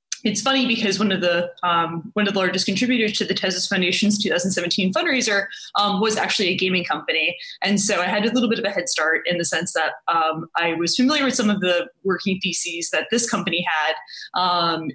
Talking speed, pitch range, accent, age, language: 230 wpm, 175-210 Hz, American, 20-39, English